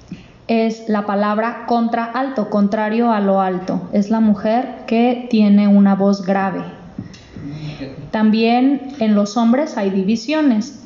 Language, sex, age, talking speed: Spanish, female, 20-39, 125 wpm